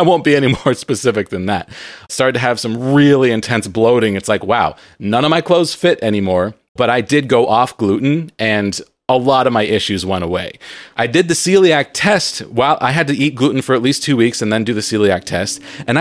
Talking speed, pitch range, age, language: 230 wpm, 105-145 Hz, 30-49, English